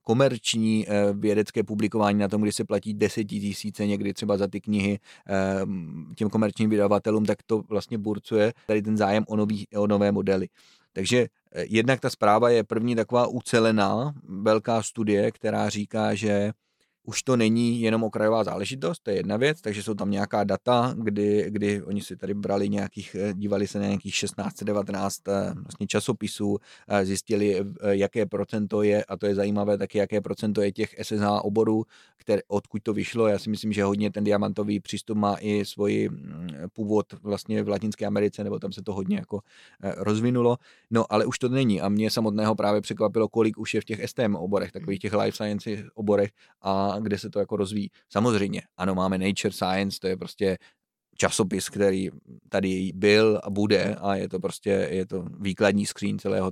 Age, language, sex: 30-49, Czech, male